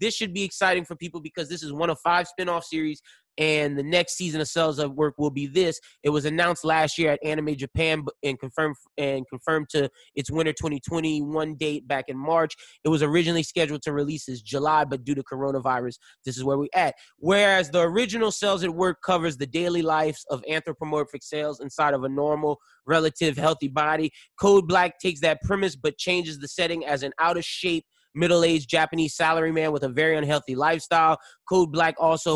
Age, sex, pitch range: 20-39, male, 145-170 Hz